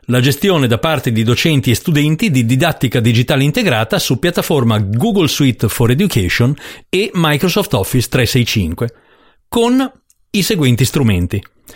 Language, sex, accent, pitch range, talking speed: Italian, male, native, 115-160 Hz, 135 wpm